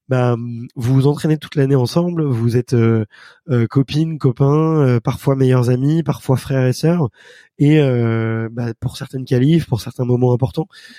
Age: 20-39